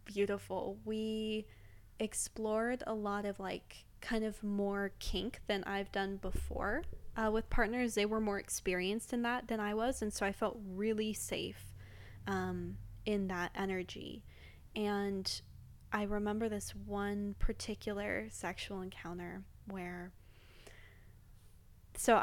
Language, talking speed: English, 125 wpm